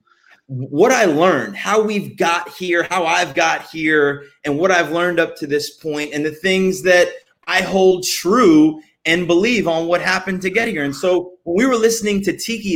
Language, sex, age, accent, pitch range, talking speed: English, male, 30-49, American, 155-200 Hz, 200 wpm